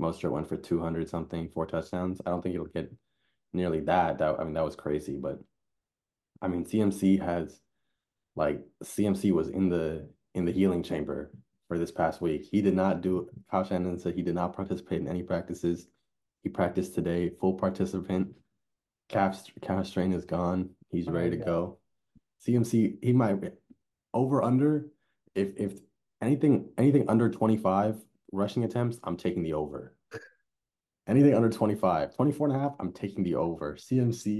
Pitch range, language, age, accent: 85-105 Hz, English, 20-39, American